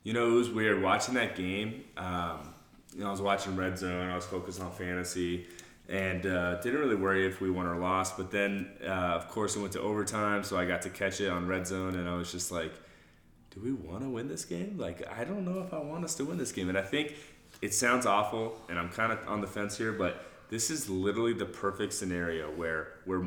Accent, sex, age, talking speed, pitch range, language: American, male, 30-49, 250 wpm, 90-115 Hz, English